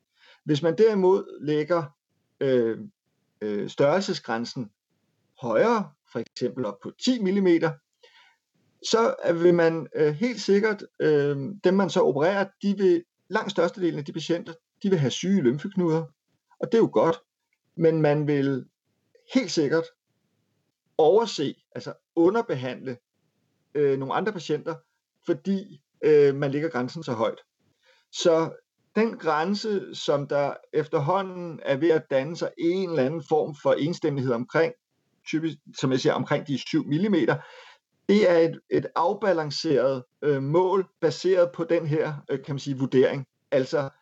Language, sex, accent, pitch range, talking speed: Danish, male, native, 145-195 Hz, 135 wpm